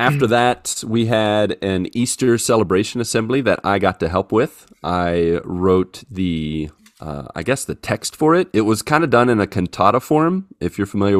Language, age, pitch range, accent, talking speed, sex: English, 30-49, 80-100 Hz, American, 195 wpm, male